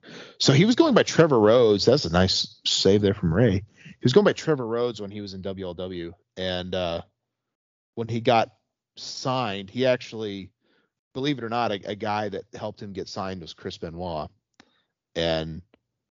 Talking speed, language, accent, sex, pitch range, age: 180 wpm, English, American, male, 95-125 Hz, 30-49